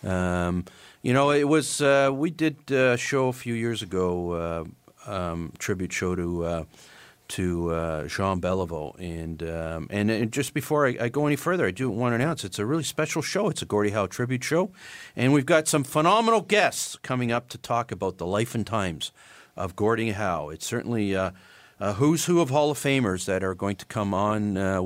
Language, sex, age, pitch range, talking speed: English, male, 50-69, 95-140 Hz, 210 wpm